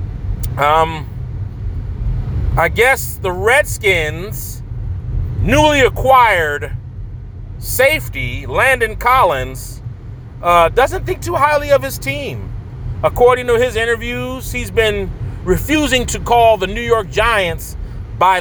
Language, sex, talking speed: English, male, 105 wpm